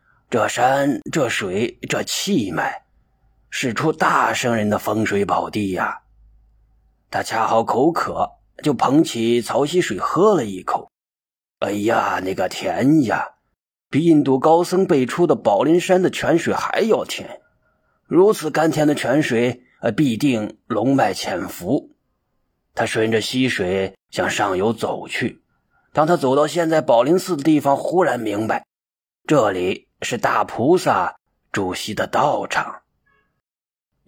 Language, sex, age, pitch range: Chinese, male, 30-49, 110-160 Hz